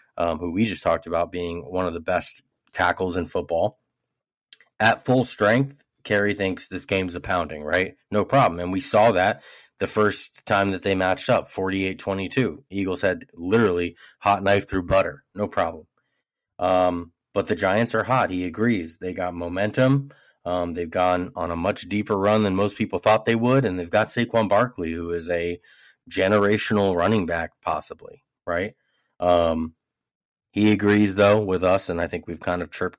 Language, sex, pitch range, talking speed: English, male, 85-105 Hz, 175 wpm